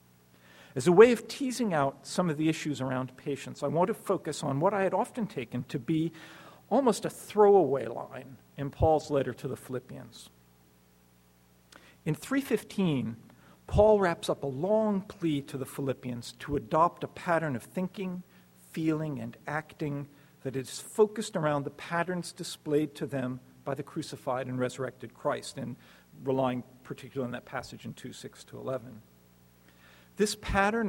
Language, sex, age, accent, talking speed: English, male, 50-69, American, 155 wpm